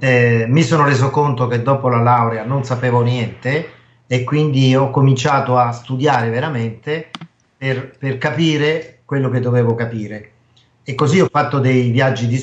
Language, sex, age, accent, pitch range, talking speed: Italian, male, 40-59, native, 120-135 Hz, 160 wpm